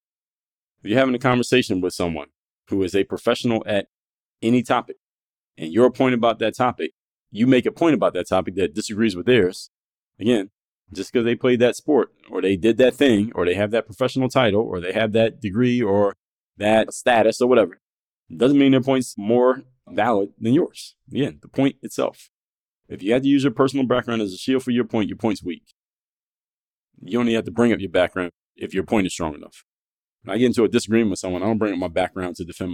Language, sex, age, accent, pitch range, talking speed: English, male, 30-49, American, 95-120 Hz, 220 wpm